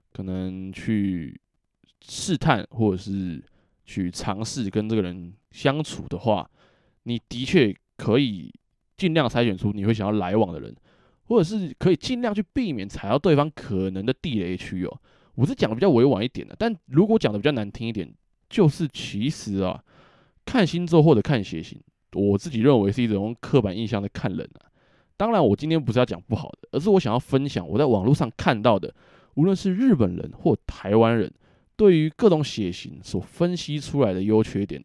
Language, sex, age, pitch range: Chinese, male, 20-39, 100-155 Hz